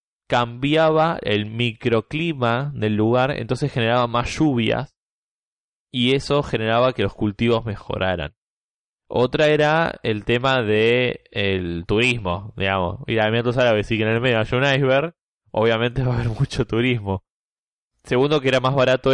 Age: 10-29